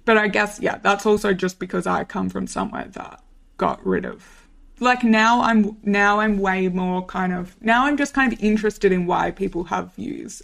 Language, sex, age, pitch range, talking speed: English, female, 20-39, 185-220 Hz, 205 wpm